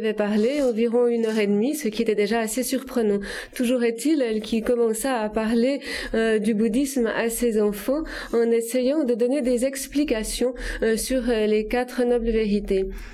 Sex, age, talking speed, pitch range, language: female, 30-49, 170 wpm, 215-255 Hz, Italian